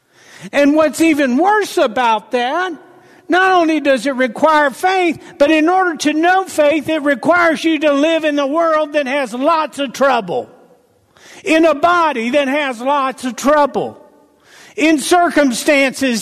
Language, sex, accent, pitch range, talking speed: English, male, American, 245-310 Hz, 150 wpm